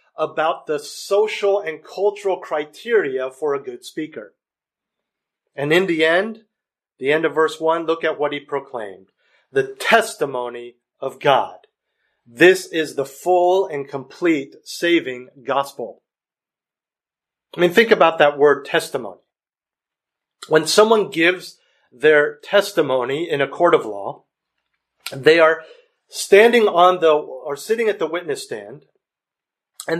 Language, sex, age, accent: English, male, 40-59, American